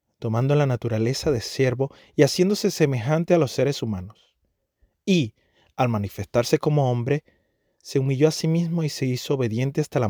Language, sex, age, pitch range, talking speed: Spanish, male, 30-49, 110-145 Hz, 165 wpm